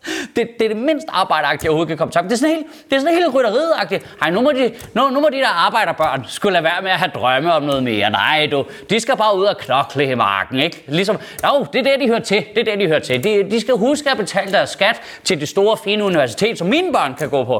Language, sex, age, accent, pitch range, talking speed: Danish, male, 30-49, native, 155-235 Hz, 270 wpm